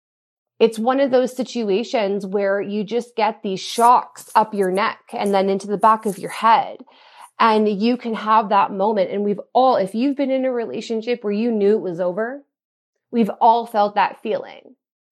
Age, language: 30-49, English